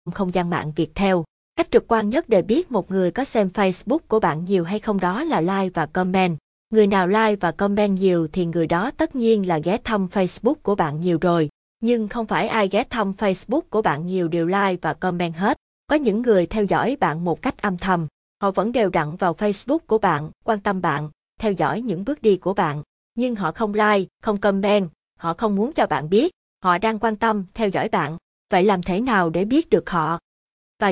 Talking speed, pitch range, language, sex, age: 225 wpm, 180-230 Hz, Vietnamese, female, 20-39